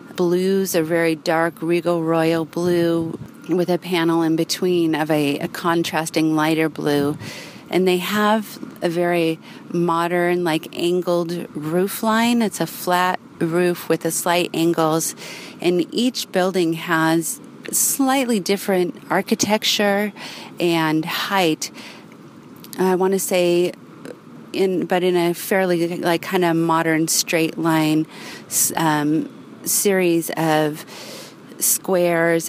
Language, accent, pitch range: English, American, 160-180 Hz